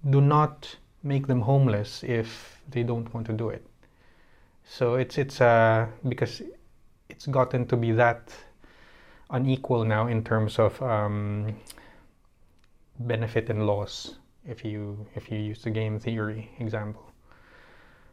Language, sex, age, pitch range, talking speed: English, male, 20-39, 110-130 Hz, 130 wpm